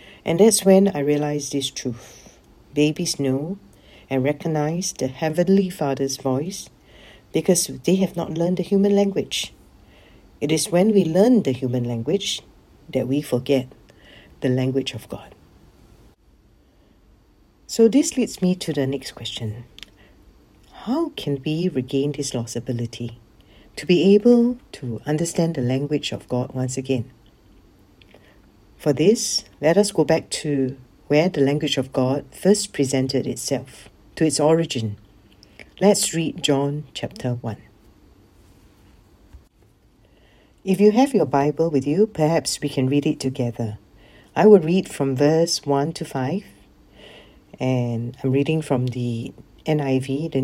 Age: 60-79